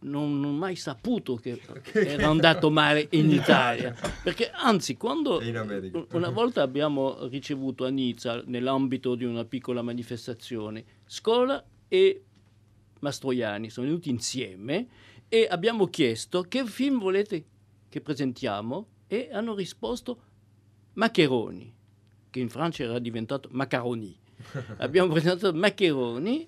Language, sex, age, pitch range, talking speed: Italian, male, 50-69, 125-170 Hz, 120 wpm